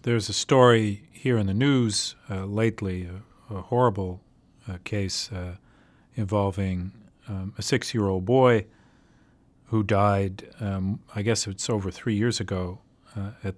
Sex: male